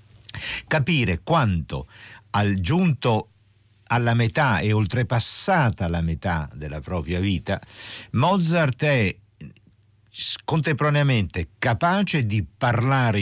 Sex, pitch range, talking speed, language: male, 85-115 Hz, 85 wpm, Italian